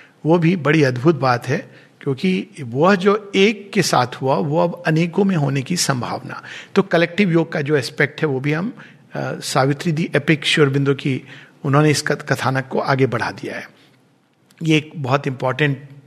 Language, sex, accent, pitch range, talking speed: Hindi, male, native, 140-180 Hz, 180 wpm